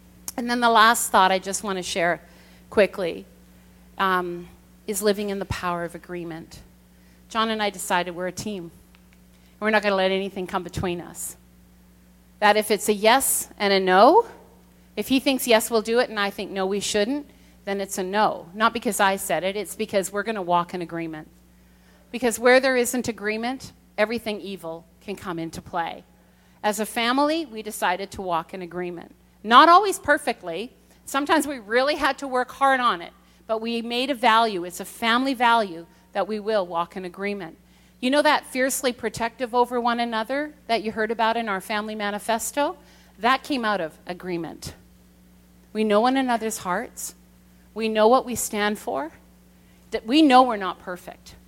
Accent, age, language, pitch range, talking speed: American, 40-59, English, 175-235 Hz, 185 wpm